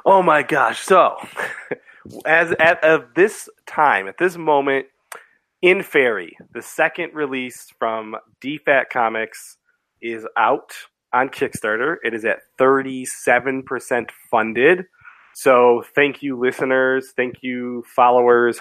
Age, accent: 20-39, American